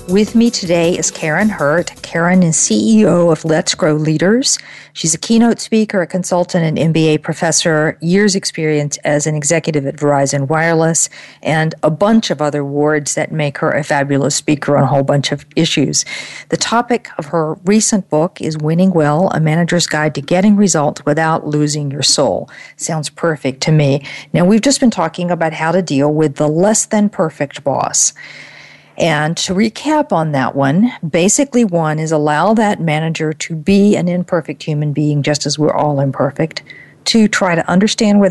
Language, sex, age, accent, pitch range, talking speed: English, female, 50-69, American, 150-185 Hz, 175 wpm